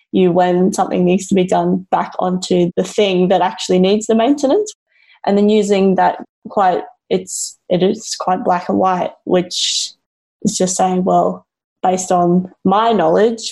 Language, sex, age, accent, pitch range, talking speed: English, female, 20-39, Australian, 175-200 Hz, 165 wpm